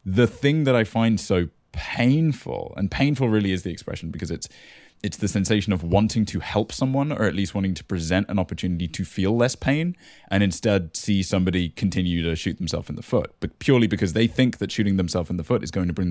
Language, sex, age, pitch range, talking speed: English, male, 20-39, 90-115 Hz, 225 wpm